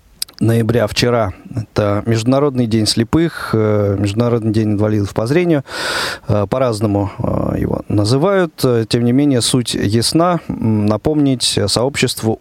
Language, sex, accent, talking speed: Russian, male, native, 100 wpm